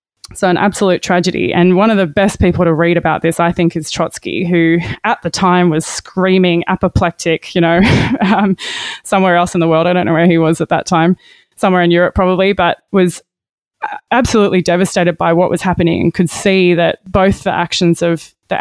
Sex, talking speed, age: female, 200 wpm, 20-39